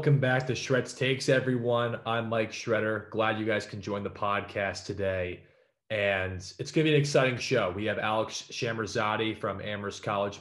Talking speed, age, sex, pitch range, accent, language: 185 wpm, 20-39, male, 105-130 Hz, American, English